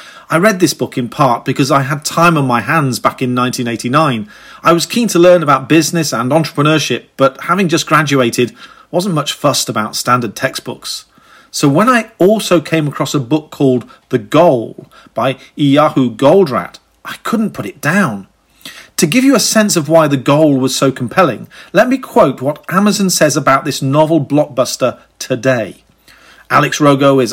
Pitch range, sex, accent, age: 135-170 Hz, male, British, 40-59